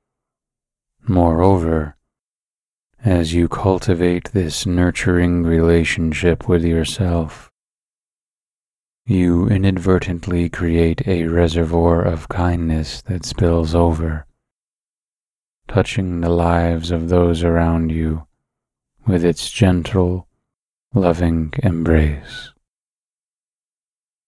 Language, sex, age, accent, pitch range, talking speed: English, male, 30-49, American, 80-95 Hz, 75 wpm